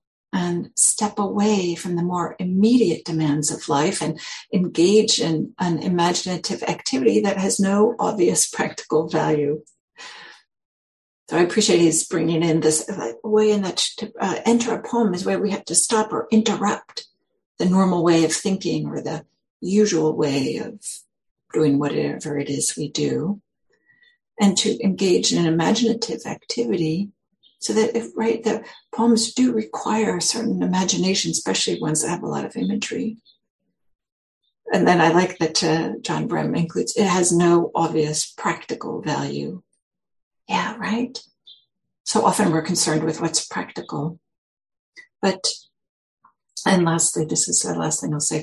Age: 60-79